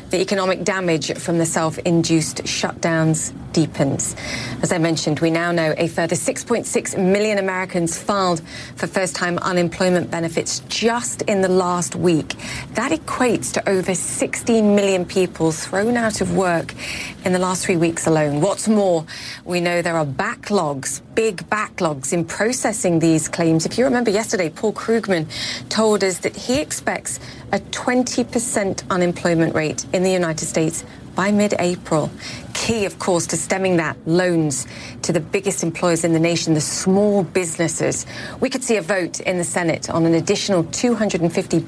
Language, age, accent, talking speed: English, 30-49, British, 155 wpm